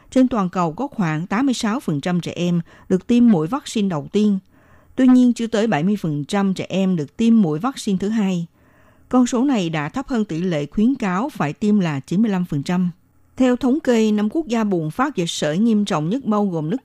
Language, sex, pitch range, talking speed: Vietnamese, female, 170-230 Hz, 205 wpm